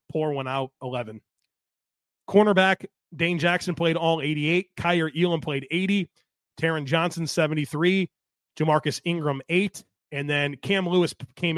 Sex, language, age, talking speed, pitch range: male, English, 30-49, 130 wpm, 140-175 Hz